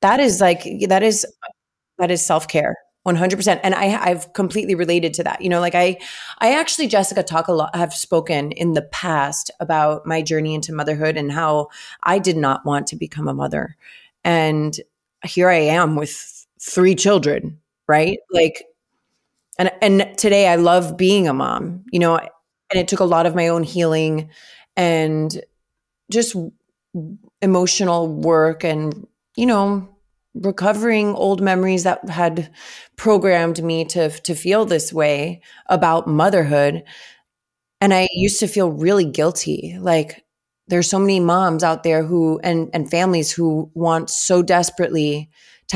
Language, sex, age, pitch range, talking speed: English, female, 30-49, 160-190 Hz, 155 wpm